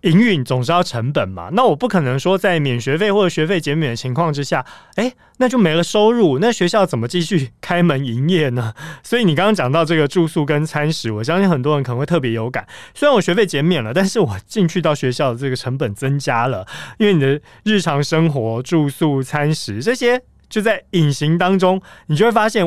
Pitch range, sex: 135-180 Hz, male